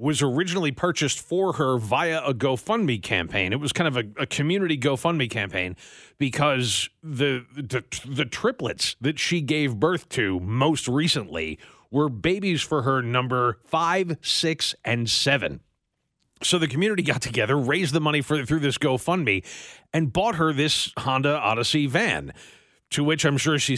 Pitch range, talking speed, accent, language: 130-170 Hz, 160 wpm, American, English